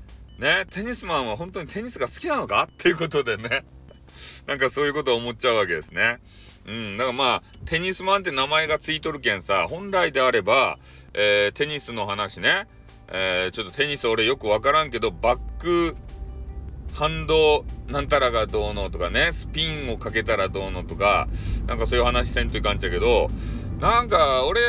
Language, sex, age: Japanese, male, 40-59